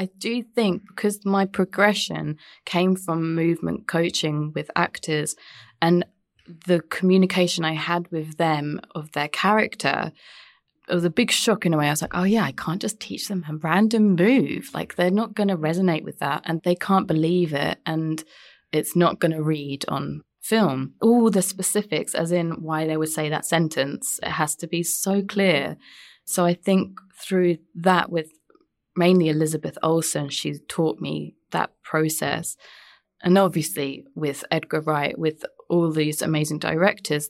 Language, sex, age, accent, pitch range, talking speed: English, female, 20-39, British, 155-180 Hz, 170 wpm